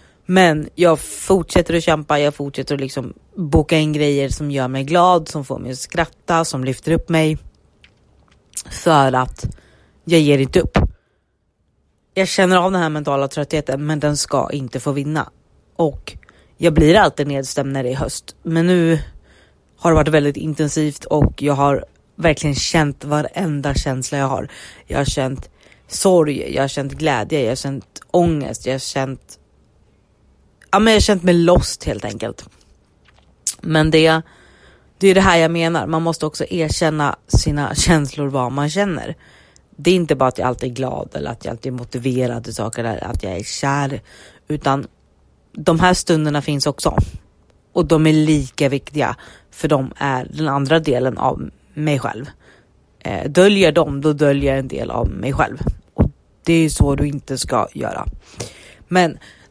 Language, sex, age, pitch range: Swedish, female, 30-49, 130-160 Hz